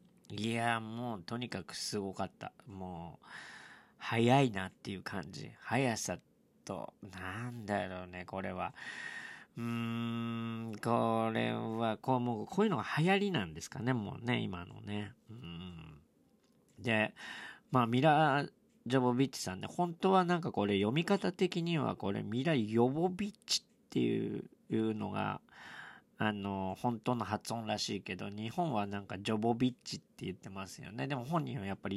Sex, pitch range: male, 100-130 Hz